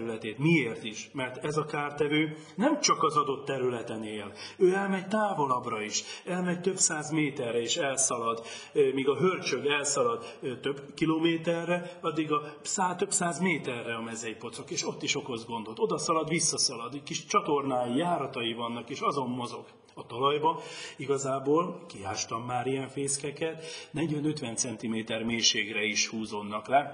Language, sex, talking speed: Hungarian, male, 145 wpm